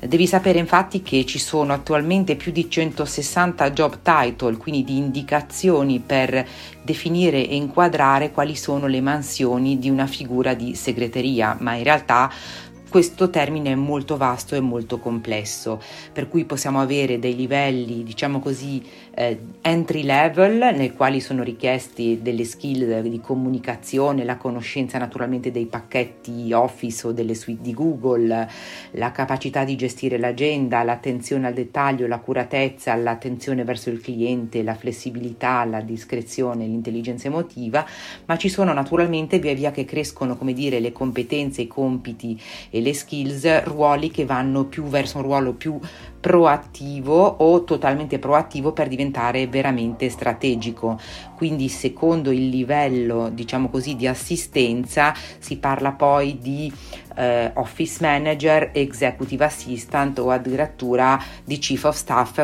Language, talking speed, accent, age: Italian, 135 wpm, native, 40-59